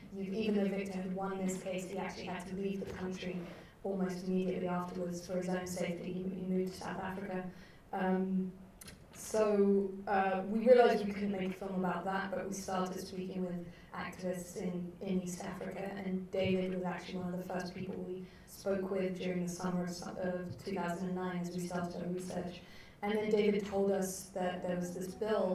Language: English